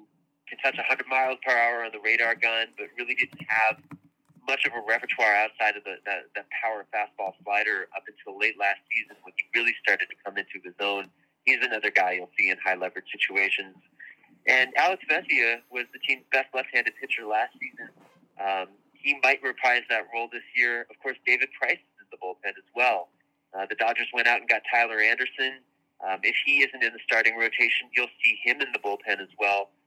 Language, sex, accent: English, male, American